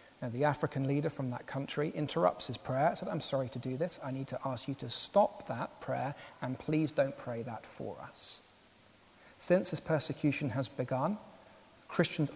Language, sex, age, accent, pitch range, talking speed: English, male, 40-59, British, 125-160 Hz, 190 wpm